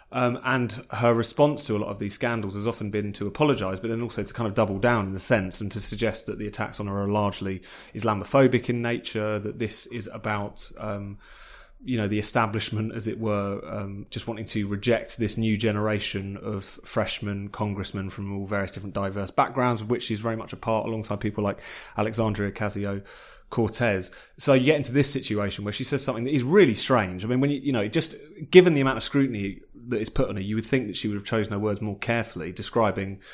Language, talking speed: English, 225 wpm